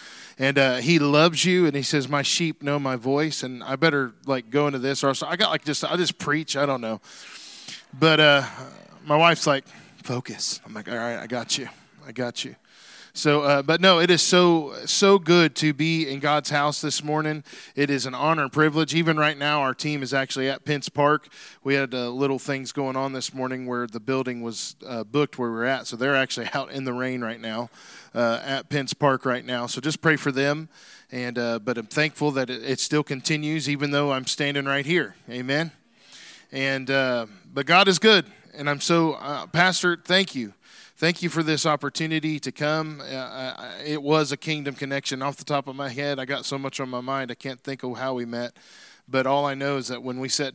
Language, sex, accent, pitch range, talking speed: English, male, American, 130-155 Hz, 230 wpm